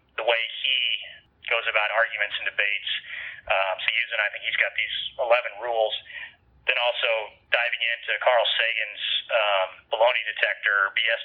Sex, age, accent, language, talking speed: male, 30-49, American, English, 150 wpm